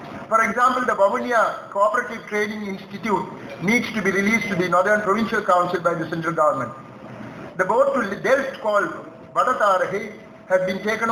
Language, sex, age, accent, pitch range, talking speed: English, male, 50-69, Indian, 185-225 Hz, 160 wpm